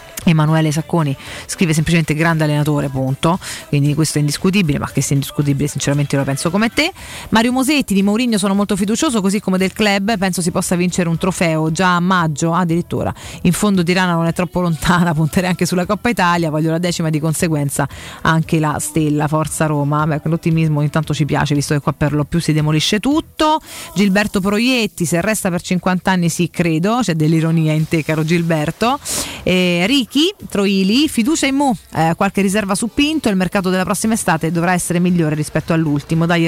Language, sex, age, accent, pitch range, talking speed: Italian, female, 30-49, native, 155-200 Hz, 190 wpm